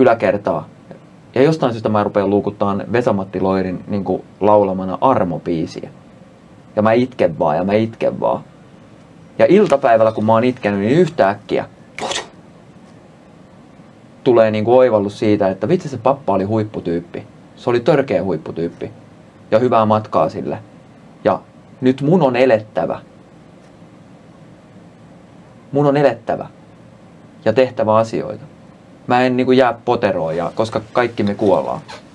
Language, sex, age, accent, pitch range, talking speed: Finnish, male, 30-49, native, 100-130 Hz, 120 wpm